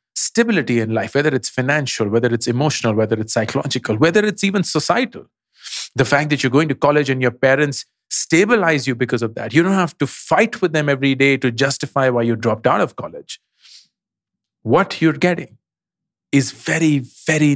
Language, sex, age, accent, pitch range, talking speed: English, male, 40-59, Indian, 125-155 Hz, 185 wpm